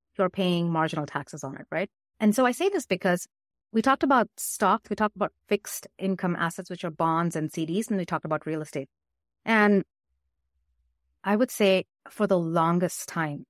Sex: female